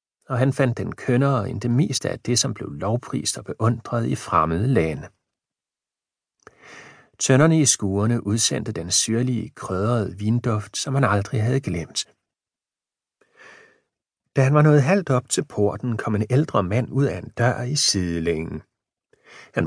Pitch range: 105-140 Hz